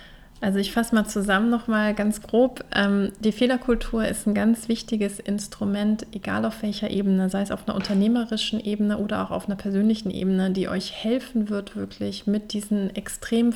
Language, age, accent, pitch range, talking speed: German, 30-49, German, 195-215 Hz, 175 wpm